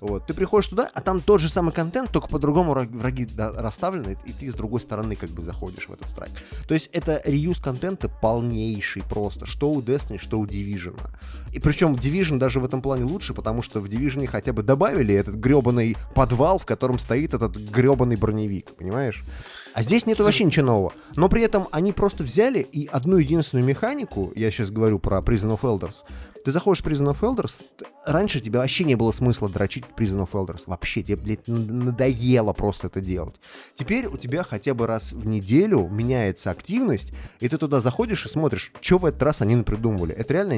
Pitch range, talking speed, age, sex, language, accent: 105-145 Hz, 195 wpm, 20-39, male, Russian, native